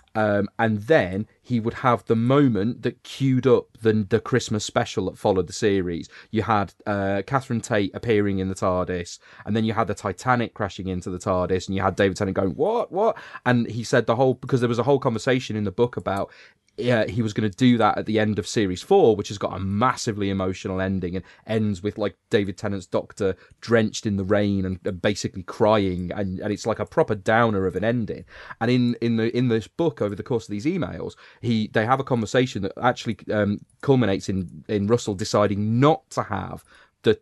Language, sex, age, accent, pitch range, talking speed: English, male, 30-49, British, 100-125 Hz, 220 wpm